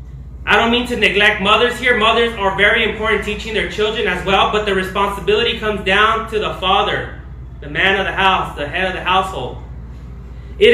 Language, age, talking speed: English, 20-39, 195 wpm